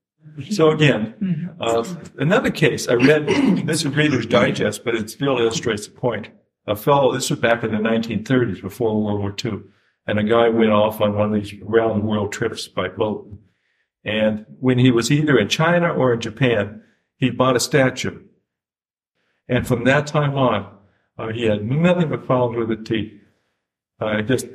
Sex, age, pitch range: male, 60-79, 110-140 Hz